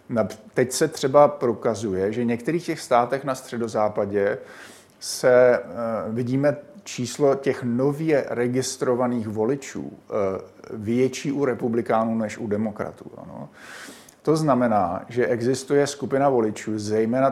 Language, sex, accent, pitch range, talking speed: Czech, male, native, 115-135 Hz, 105 wpm